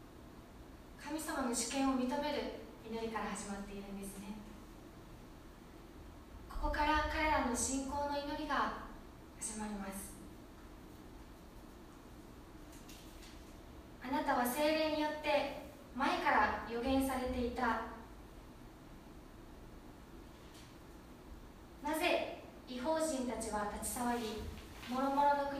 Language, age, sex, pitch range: Japanese, 20-39, female, 220-285 Hz